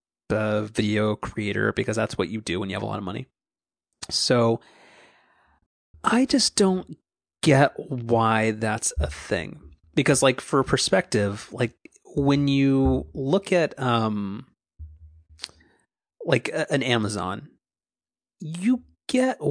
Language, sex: English, male